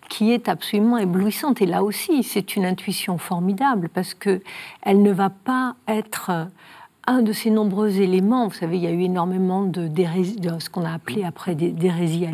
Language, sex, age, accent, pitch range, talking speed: French, female, 60-79, French, 175-215 Hz, 190 wpm